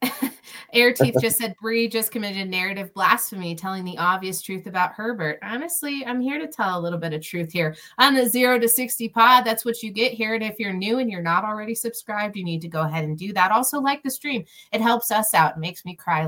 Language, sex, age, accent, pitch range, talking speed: English, female, 30-49, American, 185-255 Hz, 245 wpm